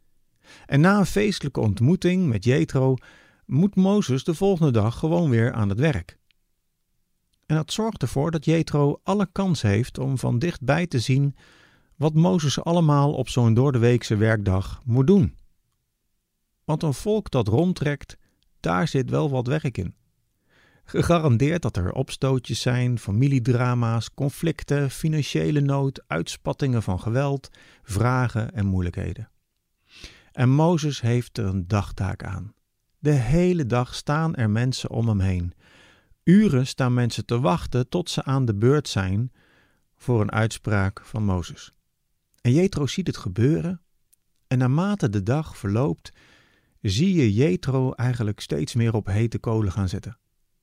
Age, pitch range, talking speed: 50-69, 110-155 Hz, 140 wpm